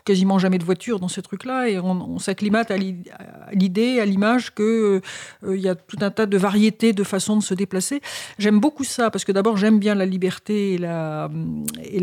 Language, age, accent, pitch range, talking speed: French, 50-69, French, 185-230 Hz, 210 wpm